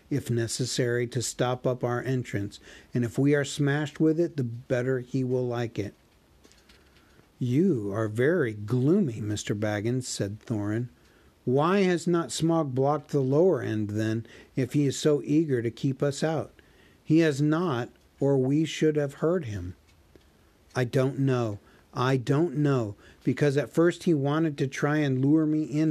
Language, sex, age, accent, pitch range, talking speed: English, male, 50-69, American, 120-150 Hz, 165 wpm